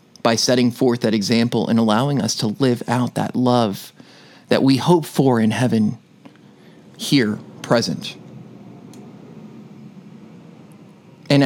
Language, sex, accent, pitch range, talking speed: English, male, American, 115-150 Hz, 115 wpm